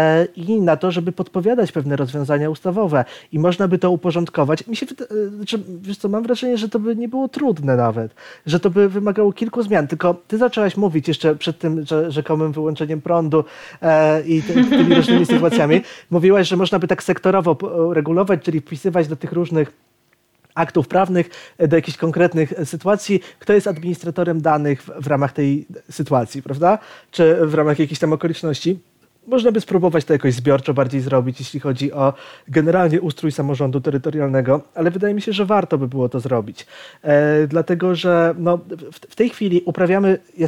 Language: Polish